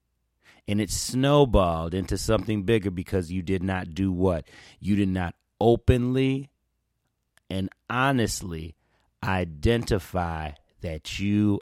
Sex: male